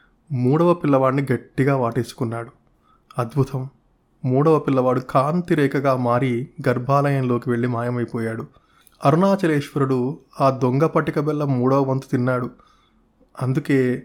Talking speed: 90 wpm